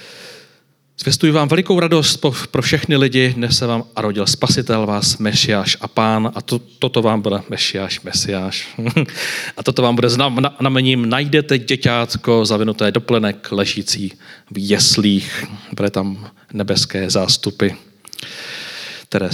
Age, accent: 40-59, native